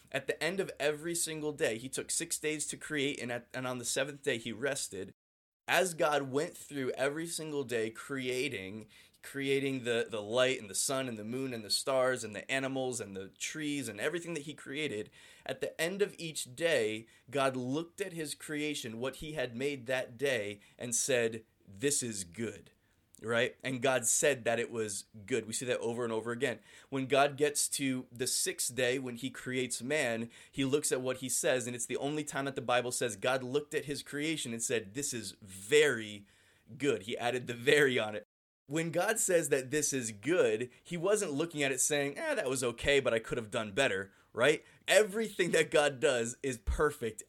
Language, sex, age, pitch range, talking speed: English, male, 20-39, 120-150 Hz, 205 wpm